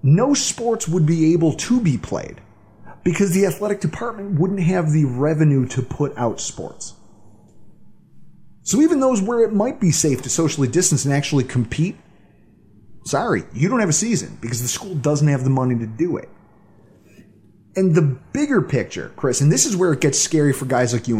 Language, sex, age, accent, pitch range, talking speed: English, male, 30-49, American, 125-180 Hz, 185 wpm